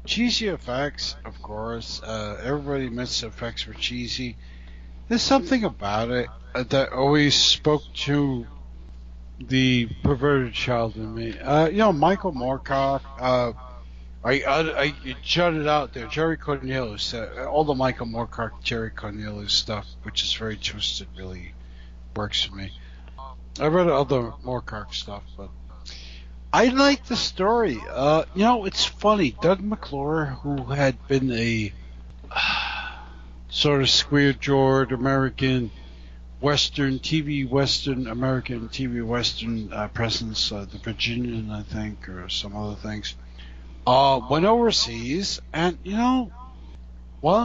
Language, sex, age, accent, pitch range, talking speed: English, male, 60-79, American, 100-150 Hz, 130 wpm